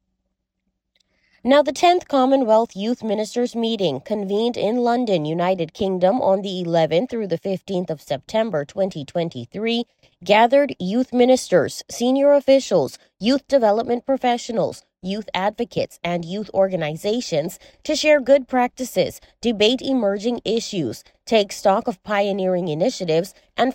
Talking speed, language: 120 wpm, English